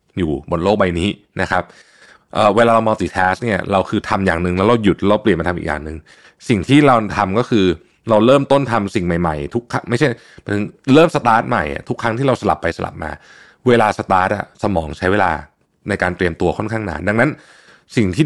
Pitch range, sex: 90-125 Hz, male